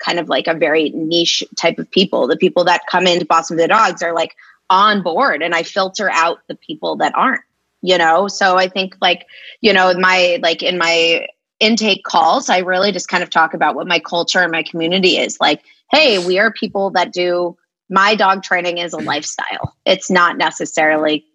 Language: English